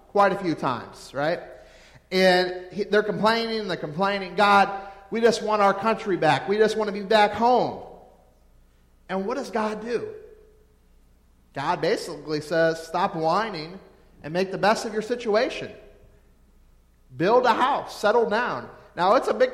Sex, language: male, English